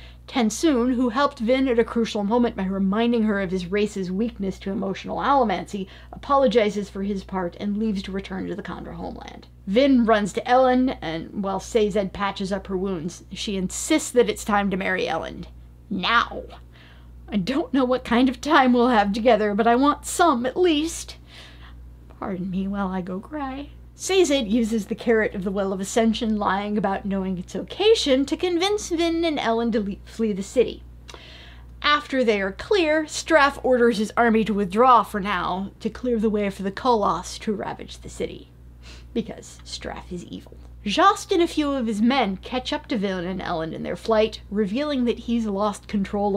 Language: English